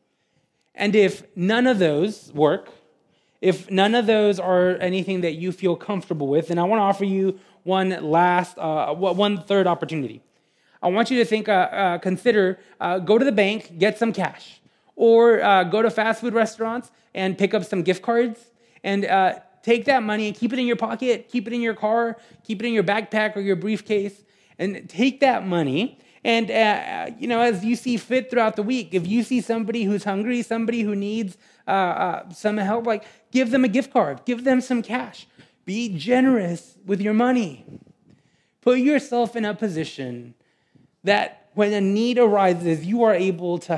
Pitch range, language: 180-230 Hz, English